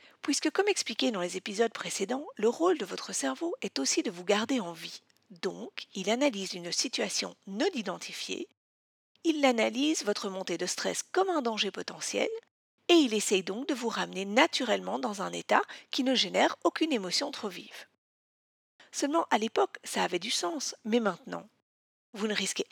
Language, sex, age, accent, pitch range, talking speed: French, female, 40-59, French, 195-315 Hz, 175 wpm